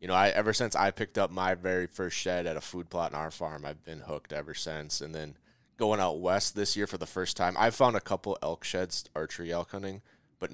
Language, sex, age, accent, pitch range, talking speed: English, male, 20-39, American, 85-105 Hz, 255 wpm